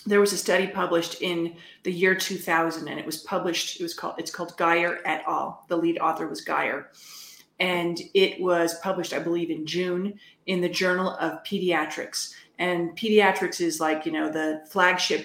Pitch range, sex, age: 165-200 Hz, female, 40-59